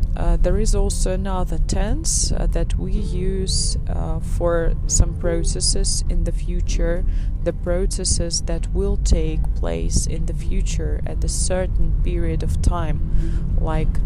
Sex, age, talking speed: female, 20-39, 140 wpm